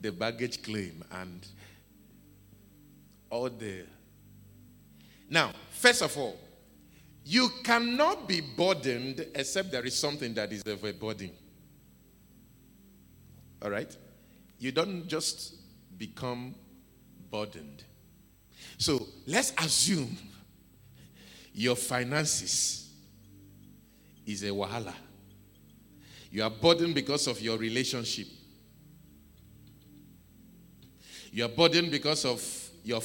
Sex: male